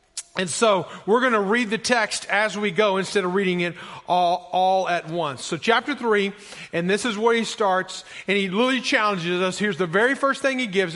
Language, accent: English, American